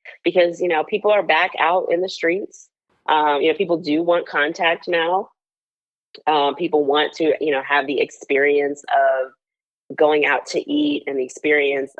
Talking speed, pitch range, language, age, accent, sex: 180 wpm, 140-185 Hz, English, 30-49, American, female